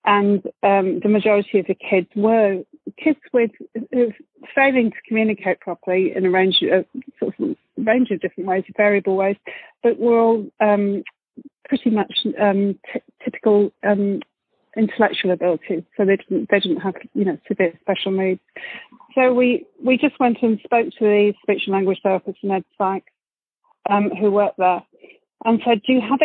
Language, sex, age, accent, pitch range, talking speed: English, female, 40-59, British, 190-235 Hz, 175 wpm